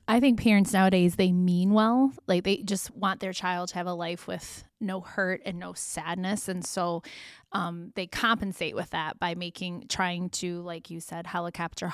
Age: 20-39